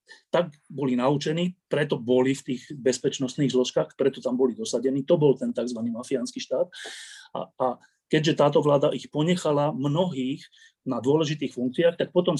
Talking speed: 155 wpm